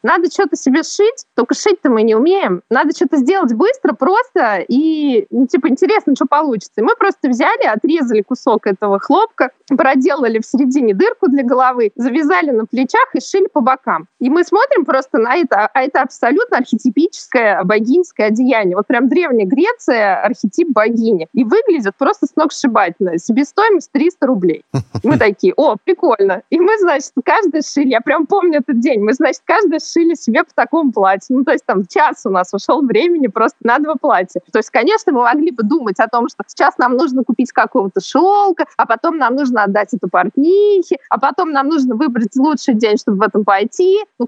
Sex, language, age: female, Russian, 20-39